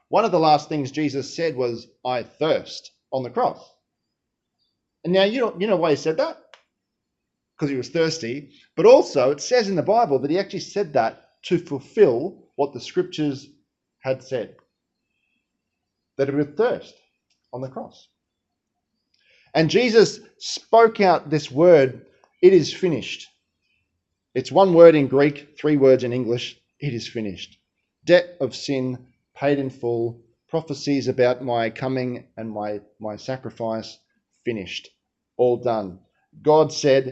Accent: Australian